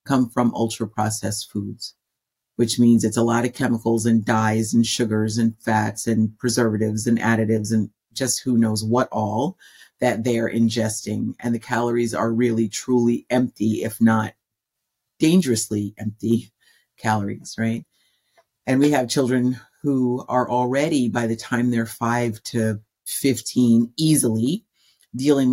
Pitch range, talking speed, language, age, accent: 110-130 Hz, 140 wpm, English, 40-59, American